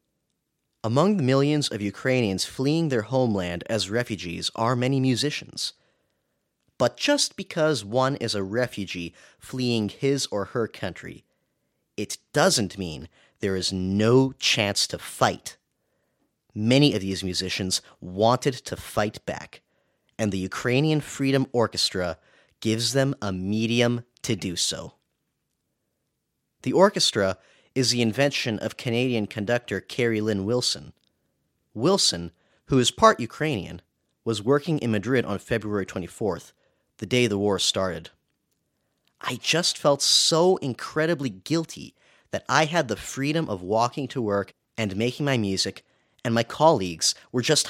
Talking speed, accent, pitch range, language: 135 wpm, American, 100-135 Hz, English